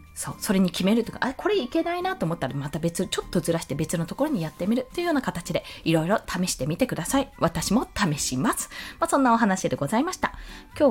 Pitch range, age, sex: 165-260 Hz, 20-39, female